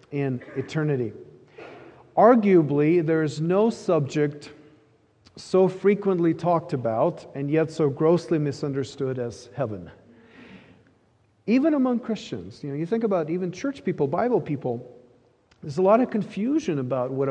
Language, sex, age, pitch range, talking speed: English, male, 40-59, 125-175 Hz, 130 wpm